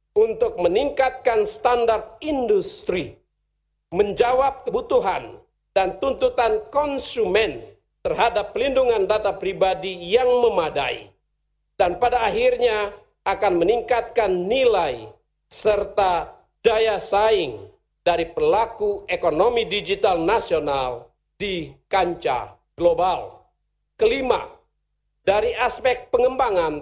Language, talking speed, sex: Indonesian, 80 wpm, male